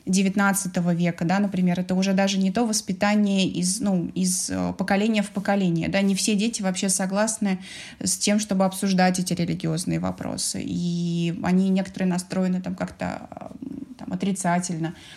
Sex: female